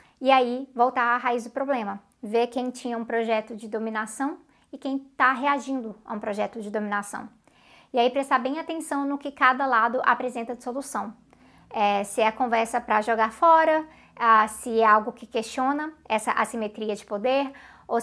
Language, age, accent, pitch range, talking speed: Portuguese, 20-39, Brazilian, 225-270 Hz, 180 wpm